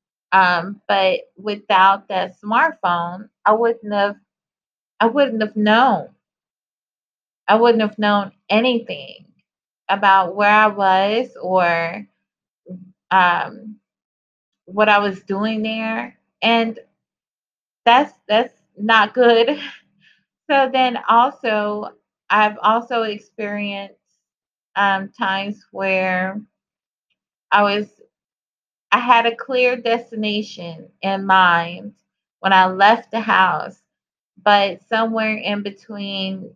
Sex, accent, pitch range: female, American, 190-225 Hz